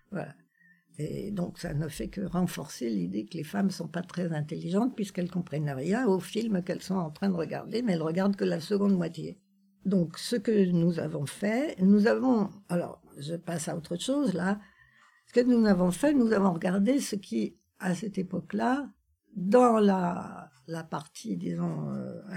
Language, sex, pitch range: French, female, 175-220 Hz